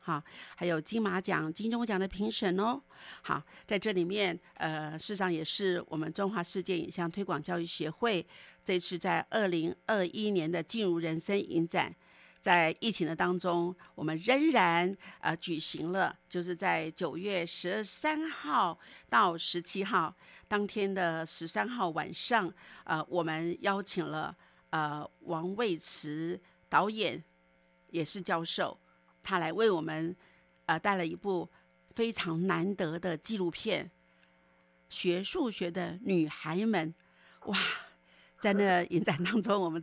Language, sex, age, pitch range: Chinese, female, 50-69, 160-195 Hz